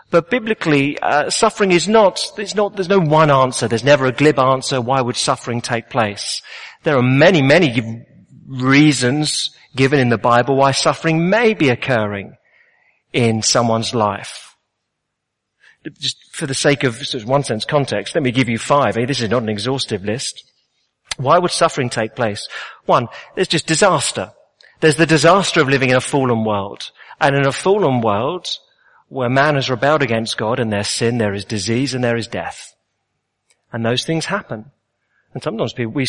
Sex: male